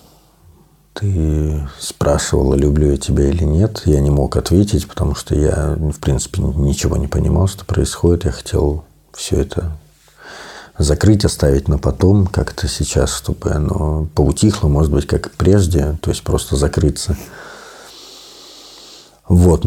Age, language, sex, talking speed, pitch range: 50-69, Russian, male, 135 wpm, 75-90 Hz